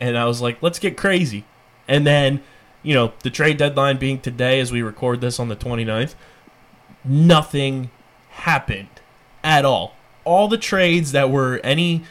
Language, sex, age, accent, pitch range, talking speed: English, male, 20-39, American, 125-155 Hz, 165 wpm